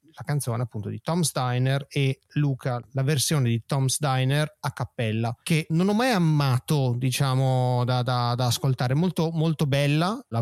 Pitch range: 125-160 Hz